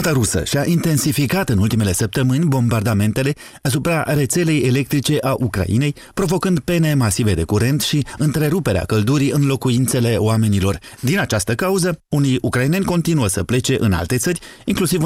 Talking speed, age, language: 145 wpm, 30-49, Romanian